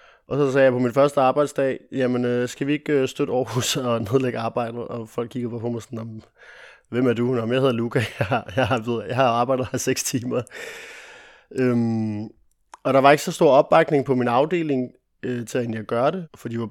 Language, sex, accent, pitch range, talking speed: Danish, male, native, 120-140 Hz, 215 wpm